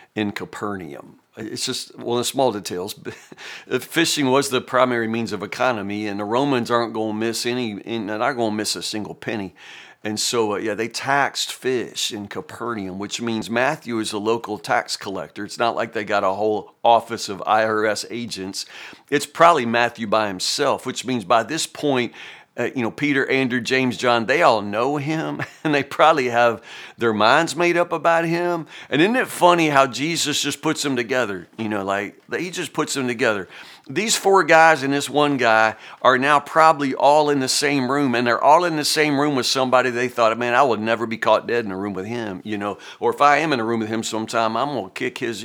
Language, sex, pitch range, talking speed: English, male, 110-145 Hz, 215 wpm